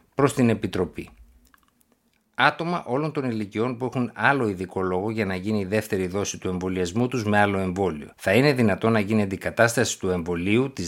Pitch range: 95-115 Hz